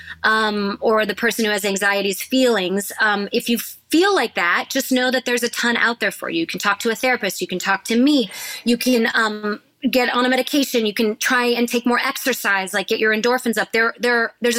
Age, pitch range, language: 20-39, 205-250 Hz, English